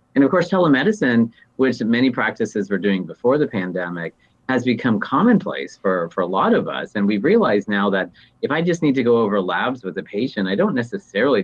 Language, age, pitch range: English, 30-49, 95-115 Hz